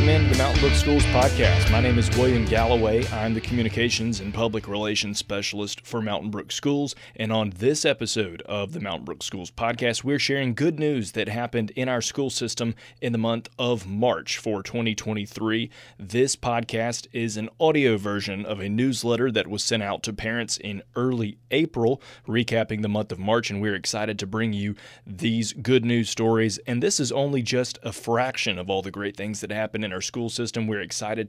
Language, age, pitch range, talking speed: English, 30-49, 105-125 Hz, 195 wpm